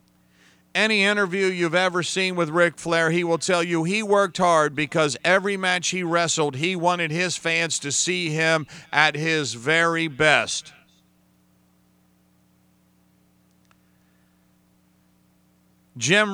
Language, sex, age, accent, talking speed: English, male, 50-69, American, 120 wpm